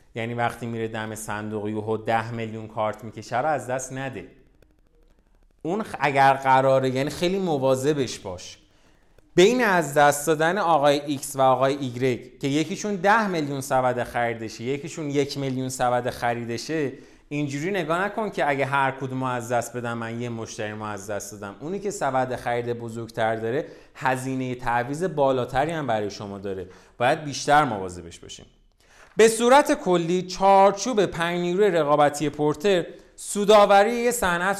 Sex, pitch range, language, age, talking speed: male, 120-185 Hz, Persian, 30-49, 150 wpm